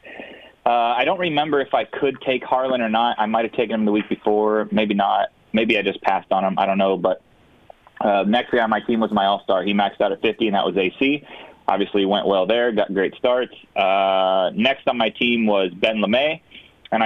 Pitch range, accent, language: 105-120 Hz, American, English